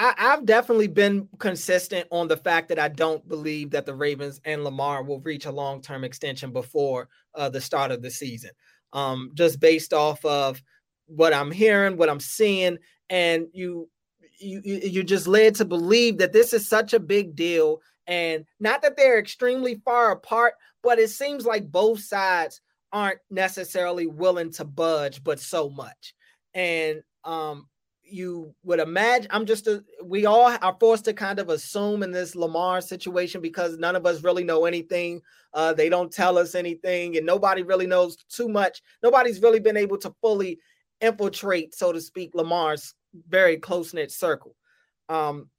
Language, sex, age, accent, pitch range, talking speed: English, male, 20-39, American, 160-210 Hz, 170 wpm